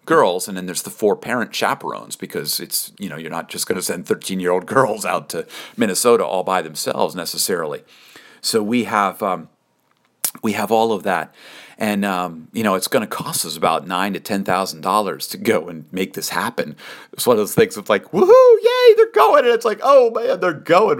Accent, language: American, English